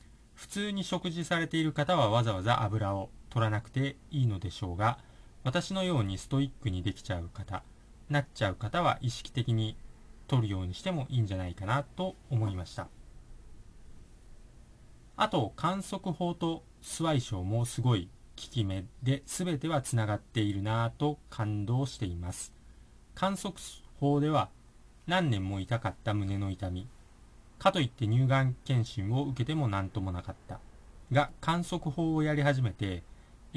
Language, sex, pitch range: Japanese, male, 105-145 Hz